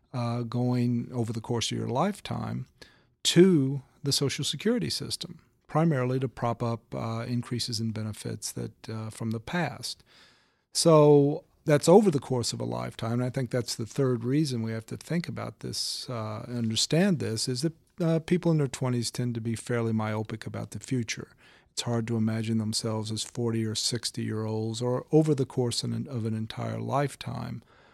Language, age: English, 50-69